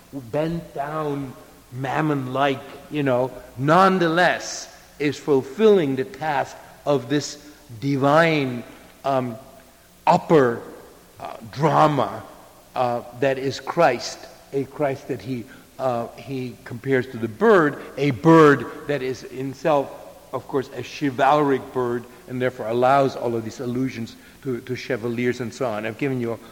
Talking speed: 130 wpm